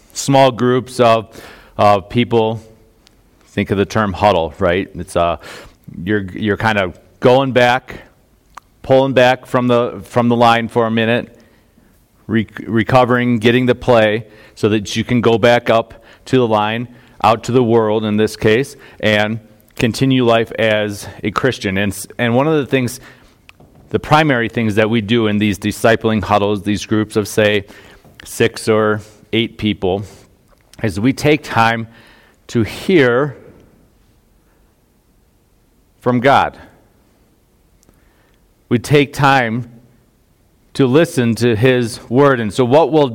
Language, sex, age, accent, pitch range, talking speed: English, male, 40-59, American, 105-125 Hz, 140 wpm